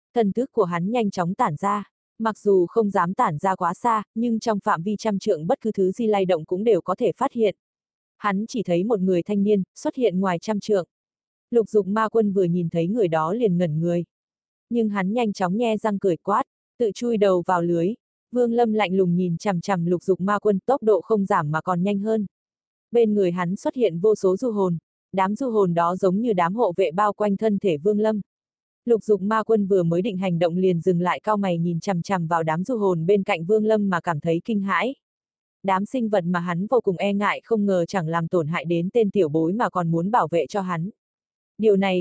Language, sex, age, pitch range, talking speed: Vietnamese, female, 20-39, 180-220 Hz, 245 wpm